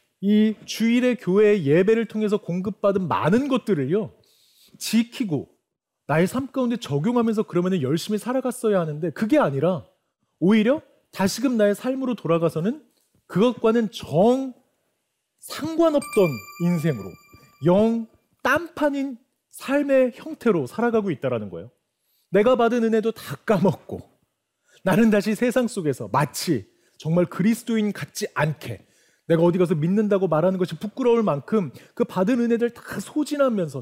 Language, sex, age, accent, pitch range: Korean, male, 40-59, native, 175-240 Hz